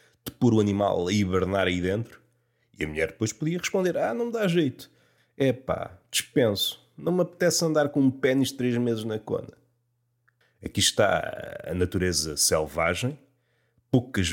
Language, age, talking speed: Portuguese, 30-49, 165 wpm